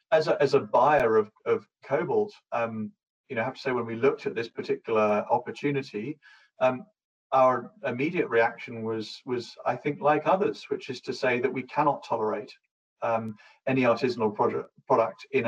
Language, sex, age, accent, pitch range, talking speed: English, male, 40-59, British, 115-150 Hz, 180 wpm